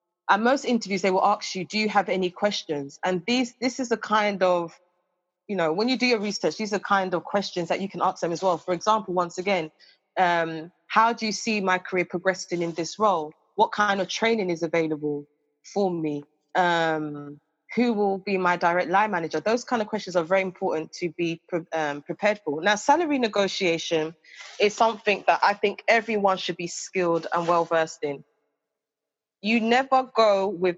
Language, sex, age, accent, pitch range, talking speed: English, female, 20-39, British, 170-210 Hz, 195 wpm